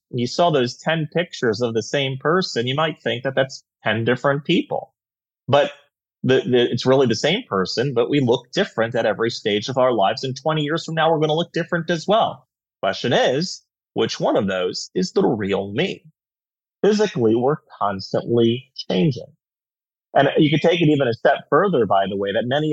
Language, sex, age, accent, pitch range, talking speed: English, male, 30-49, American, 105-155 Hz, 190 wpm